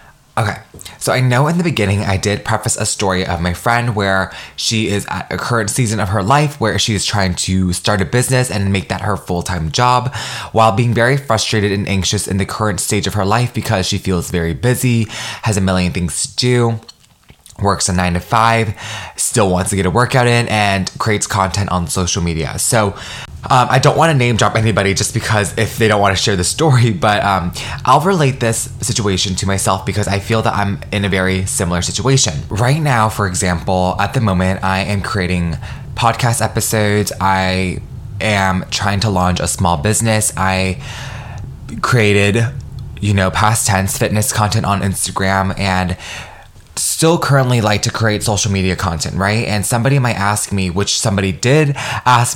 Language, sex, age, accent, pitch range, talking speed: English, male, 20-39, American, 95-115 Hz, 190 wpm